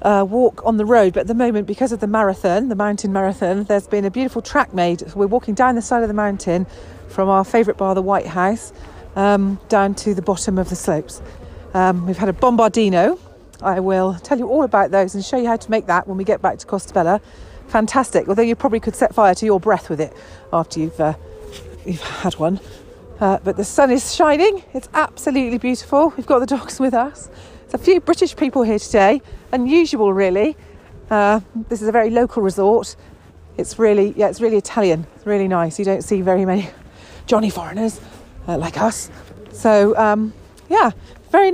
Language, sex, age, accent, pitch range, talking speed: English, female, 40-59, British, 185-240 Hz, 205 wpm